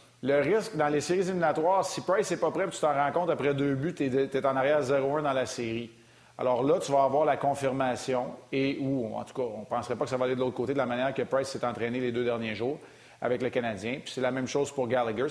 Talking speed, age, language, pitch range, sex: 280 wpm, 30-49, French, 120-140 Hz, male